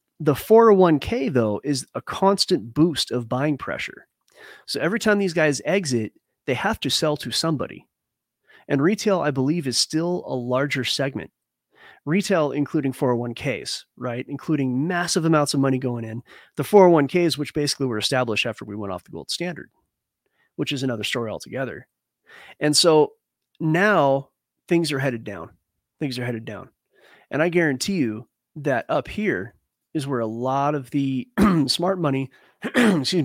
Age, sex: 30-49, male